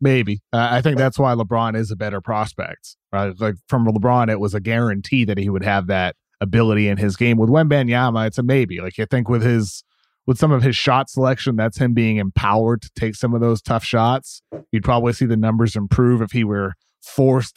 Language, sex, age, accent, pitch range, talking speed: English, male, 30-49, American, 105-125 Hz, 225 wpm